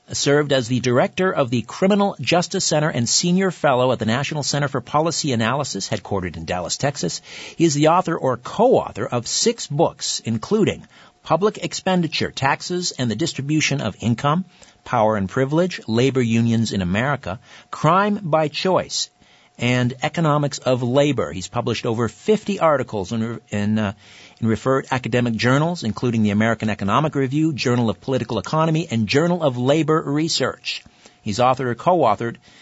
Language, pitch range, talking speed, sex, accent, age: English, 115-160 Hz, 155 wpm, male, American, 50-69